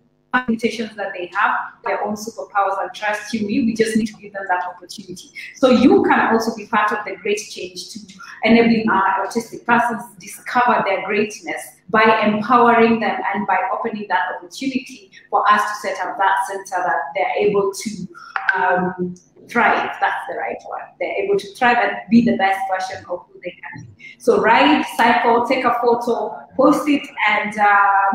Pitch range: 195-240 Hz